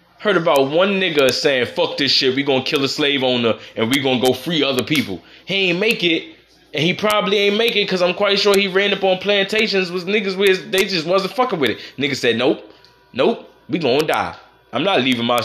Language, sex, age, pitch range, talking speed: English, male, 20-39, 125-175 Hz, 235 wpm